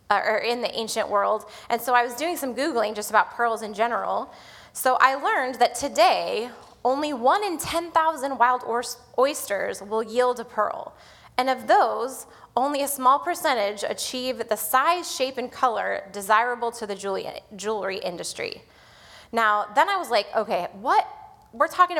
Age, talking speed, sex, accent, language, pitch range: 20-39, 160 wpm, female, American, English, 215-295 Hz